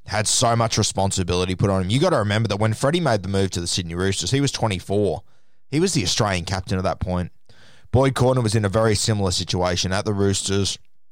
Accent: Australian